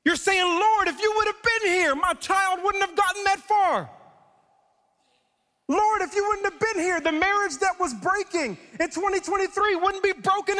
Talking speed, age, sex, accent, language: 185 wpm, 40-59, male, American, English